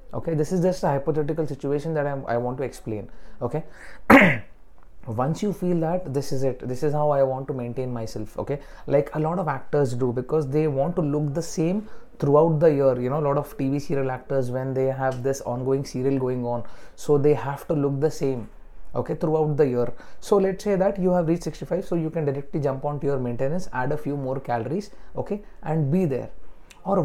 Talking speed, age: 215 wpm, 30-49